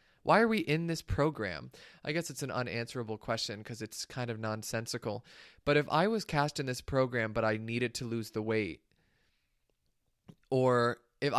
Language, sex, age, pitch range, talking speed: English, male, 20-39, 110-150 Hz, 180 wpm